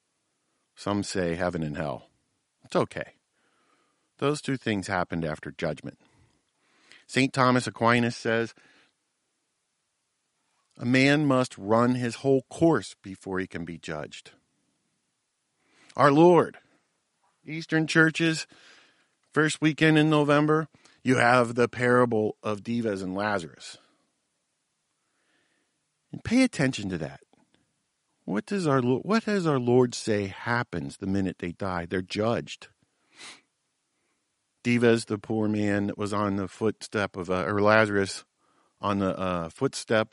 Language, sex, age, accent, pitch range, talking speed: English, male, 50-69, American, 95-125 Hz, 120 wpm